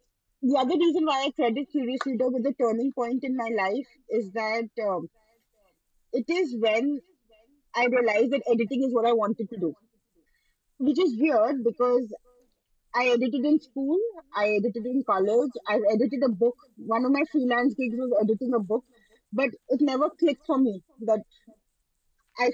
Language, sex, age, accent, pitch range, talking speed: English, female, 20-39, Indian, 225-270 Hz, 175 wpm